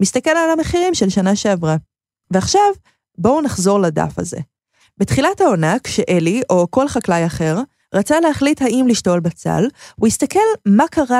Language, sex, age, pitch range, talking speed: Hebrew, female, 20-39, 175-280 Hz, 145 wpm